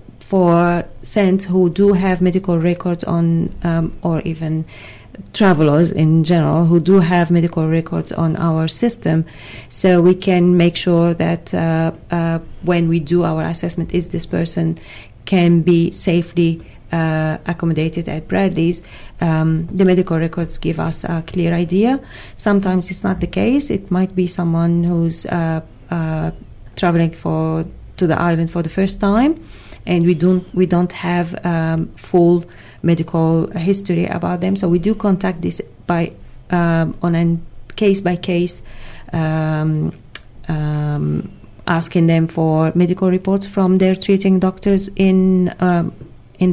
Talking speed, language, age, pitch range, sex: 145 wpm, English, 30-49, 160-185 Hz, female